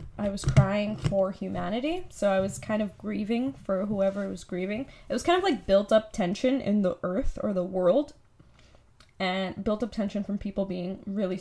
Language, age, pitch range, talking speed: English, 10-29, 190-245 Hz, 195 wpm